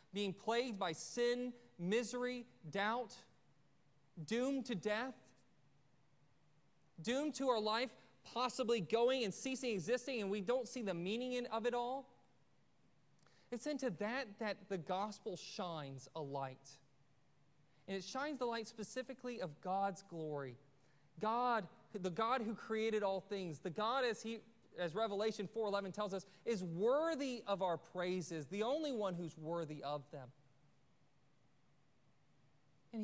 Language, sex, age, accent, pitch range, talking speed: English, male, 30-49, American, 155-230 Hz, 135 wpm